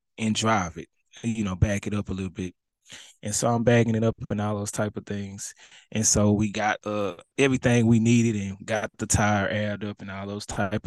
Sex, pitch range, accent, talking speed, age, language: male, 100-115 Hz, American, 225 wpm, 20-39, English